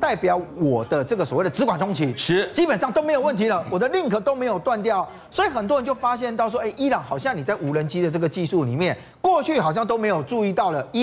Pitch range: 170-270 Hz